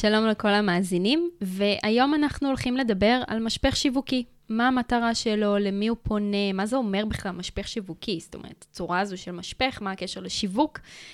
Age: 20-39